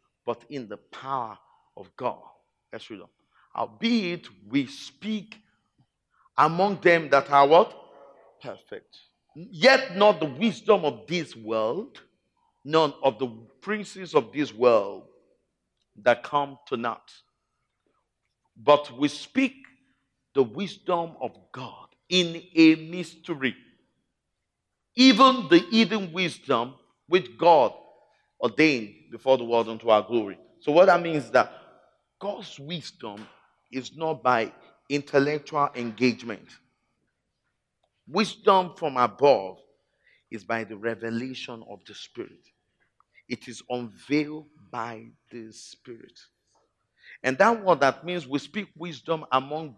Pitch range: 120-180 Hz